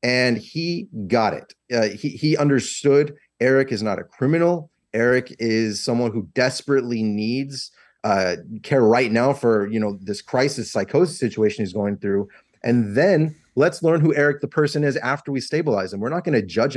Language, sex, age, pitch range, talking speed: English, male, 30-49, 115-145 Hz, 185 wpm